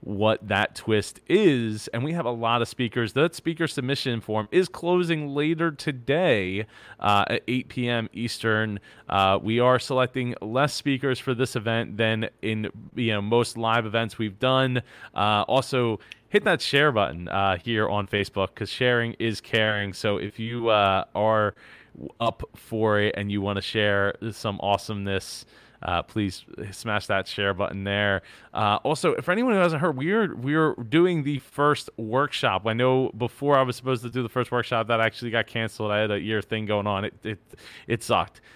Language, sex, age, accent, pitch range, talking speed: English, male, 20-39, American, 105-130 Hz, 185 wpm